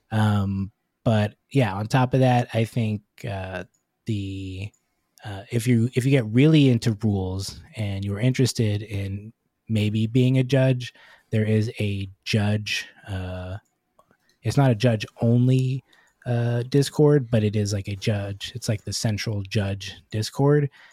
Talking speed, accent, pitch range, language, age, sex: 150 wpm, American, 100-120 Hz, English, 20-39, male